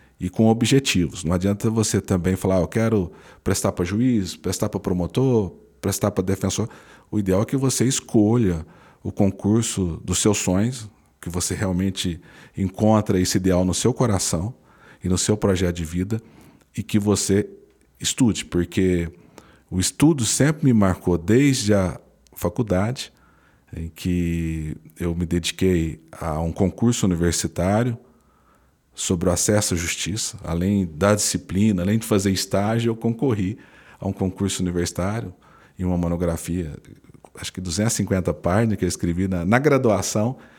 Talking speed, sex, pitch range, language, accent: 145 wpm, male, 90-110 Hz, Portuguese, Brazilian